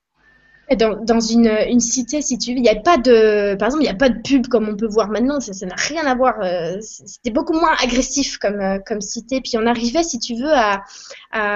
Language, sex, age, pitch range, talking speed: French, female, 20-39, 215-275 Hz, 240 wpm